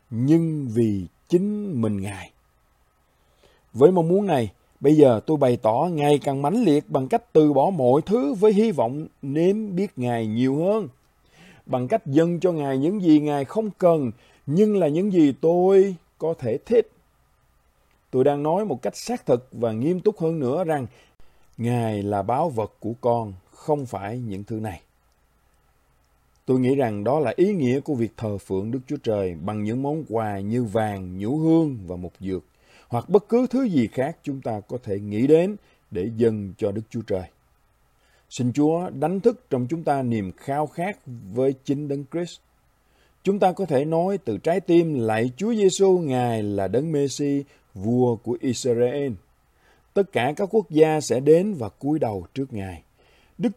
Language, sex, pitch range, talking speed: Vietnamese, male, 110-170 Hz, 180 wpm